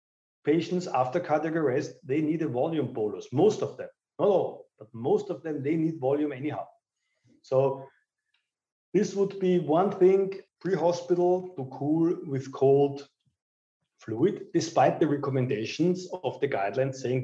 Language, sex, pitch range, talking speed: English, male, 140-185 Hz, 145 wpm